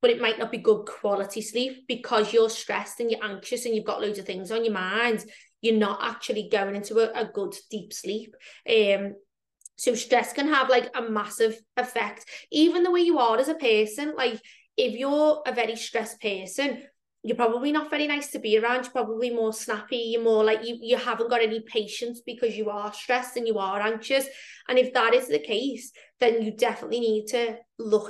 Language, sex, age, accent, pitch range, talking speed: English, female, 20-39, British, 215-255 Hz, 210 wpm